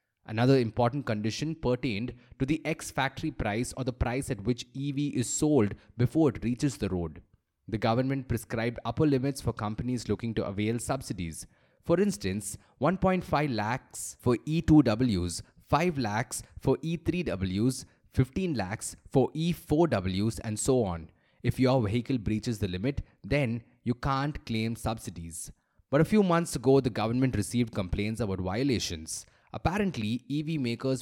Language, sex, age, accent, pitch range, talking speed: English, male, 20-39, Indian, 105-140 Hz, 145 wpm